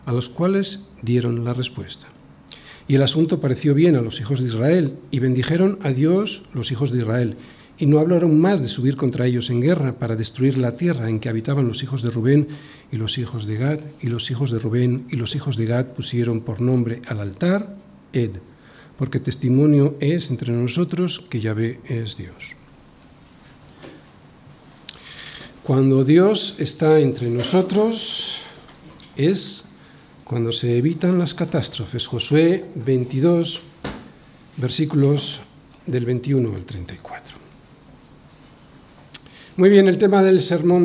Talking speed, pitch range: 145 wpm, 125-170 Hz